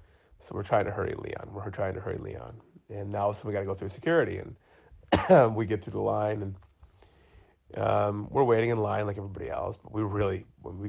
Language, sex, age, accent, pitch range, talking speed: English, male, 30-49, American, 100-110 Hz, 210 wpm